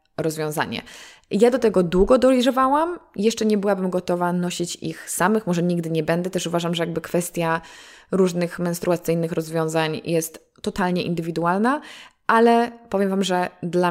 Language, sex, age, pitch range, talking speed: Polish, female, 20-39, 170-215 Hz, 140 wpm